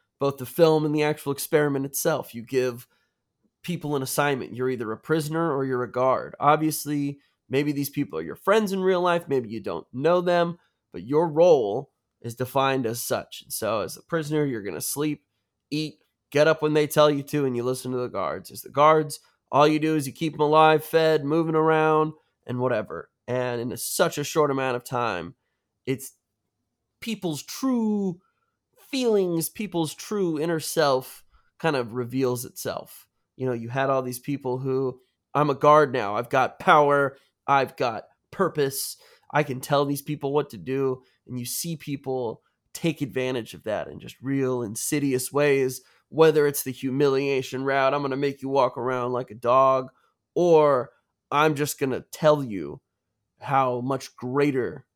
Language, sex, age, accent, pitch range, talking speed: English, male, 20-39, American, 130-155 Hz, 180 wpm